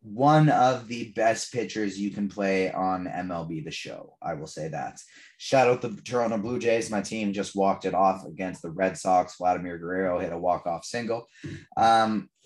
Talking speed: 190 wpm